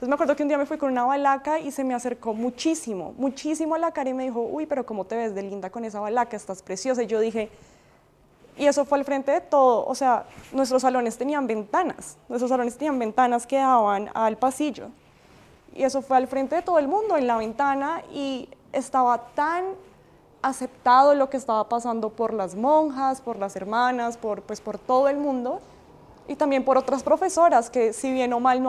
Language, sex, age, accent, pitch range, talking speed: Spanish, female, 20-39, Colombian, 235-275 Hz, 215 wpm